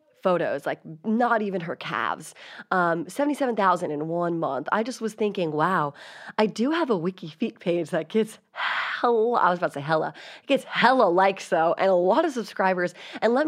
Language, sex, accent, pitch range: English, female, American, 165-220 Hz